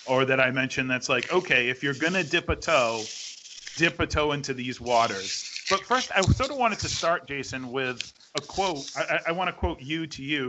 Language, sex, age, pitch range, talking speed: English, male, 40-59, 130-170 Hz, 225 wpm